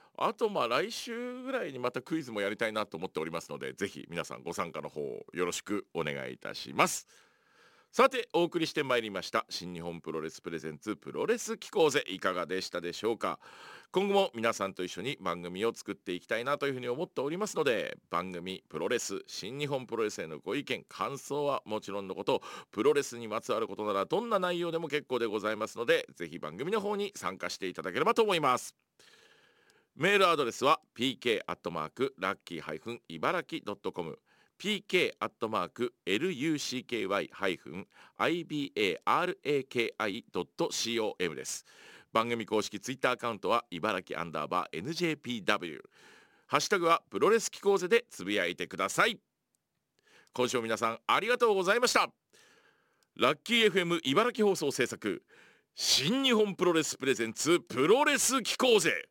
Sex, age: male, 50-69